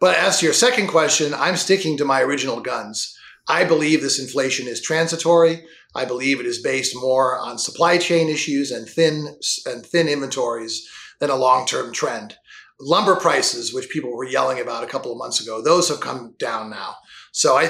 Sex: male